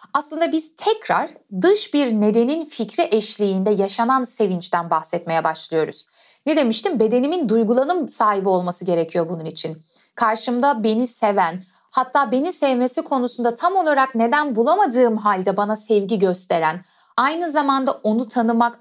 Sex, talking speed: female, 130 wpm